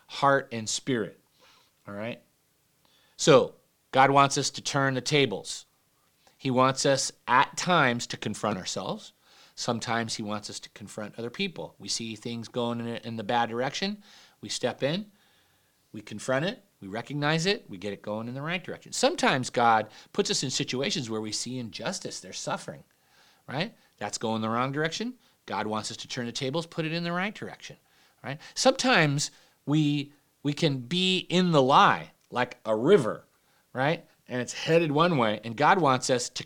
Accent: American